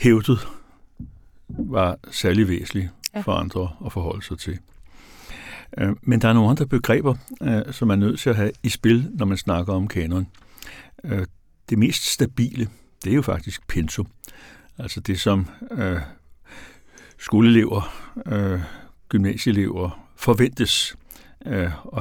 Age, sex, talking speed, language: 60-79, male, 120 wpm, Danish